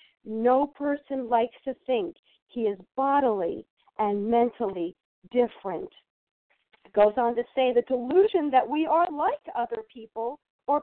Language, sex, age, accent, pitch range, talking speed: English, female, 50-69, American, 235-330 Hz, 140 wpm